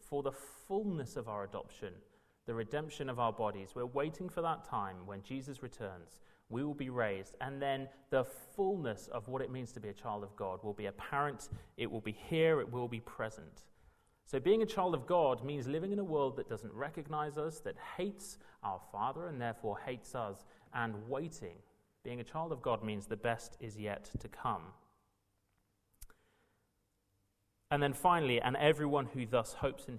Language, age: English, 30-49